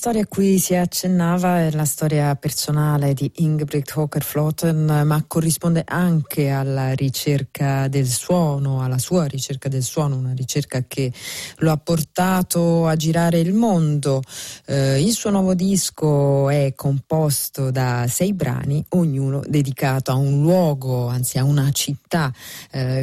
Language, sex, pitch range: Italian, female, 140-175 Hz